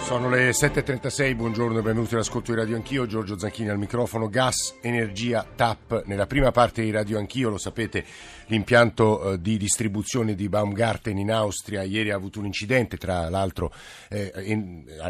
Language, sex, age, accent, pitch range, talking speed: Italian, male, 50-69, native, 100-120 Hz, 160 wpm